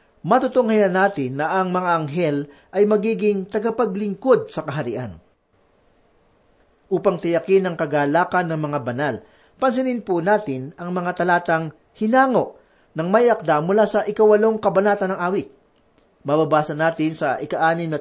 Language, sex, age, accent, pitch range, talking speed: Filipino, male, 40-59, native, 160-210 Hz, 125 wpm